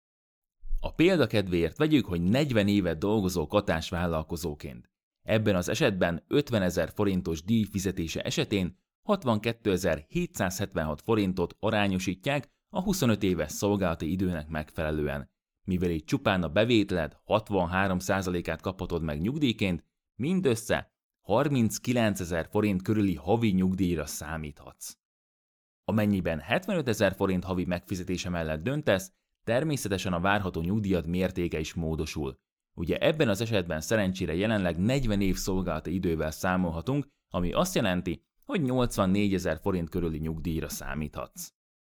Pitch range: 85-105 Hz